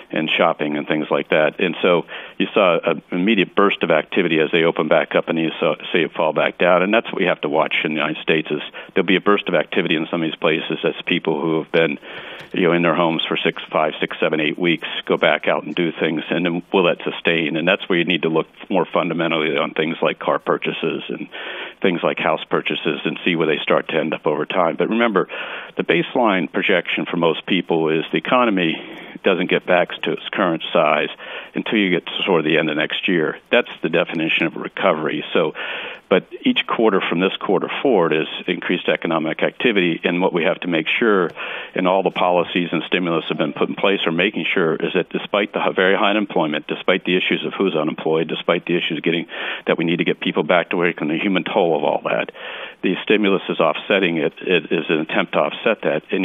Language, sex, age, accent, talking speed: English, male, 50-69, American, 235 wpm